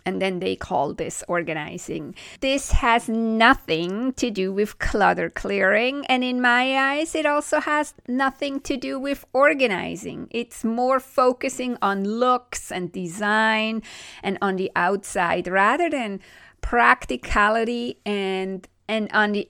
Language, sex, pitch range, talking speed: English, female, 195-275 Hz, 135 wpm